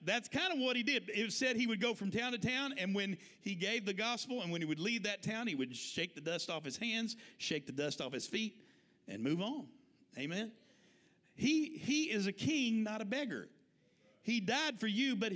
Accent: American